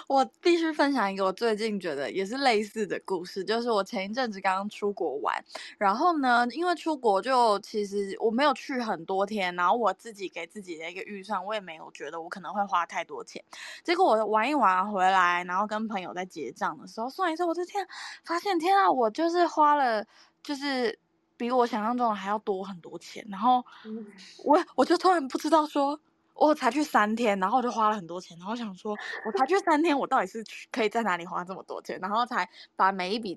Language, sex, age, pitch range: Chinese, female, 20-39, 195-275 Hz